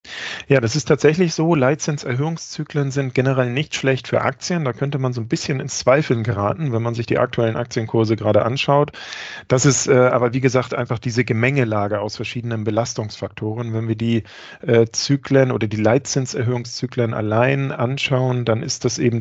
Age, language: 40-59, German